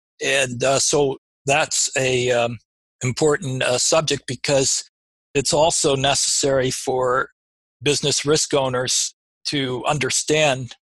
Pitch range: 120-135 Hz